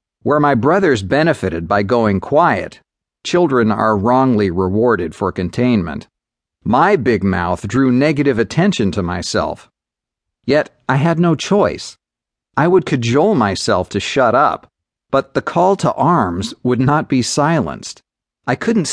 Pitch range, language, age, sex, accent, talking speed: 105-150 Hz, English, 40-59, male, American, 140 wpm